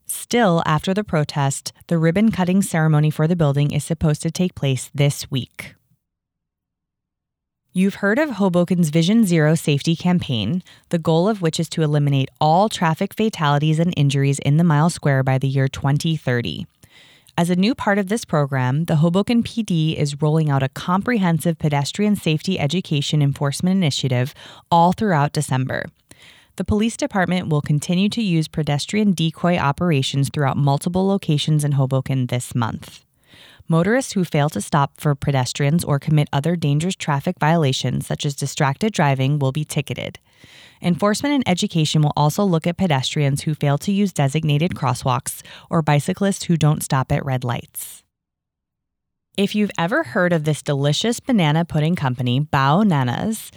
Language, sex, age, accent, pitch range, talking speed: English, female, 20-39, American, 140-180 Hz, 155 wpm